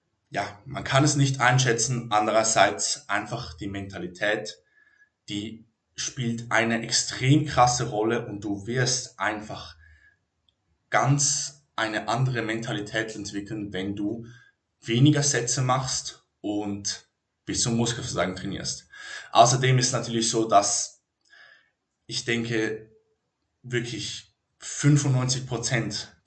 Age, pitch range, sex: 20-39, 110-140 Hz, male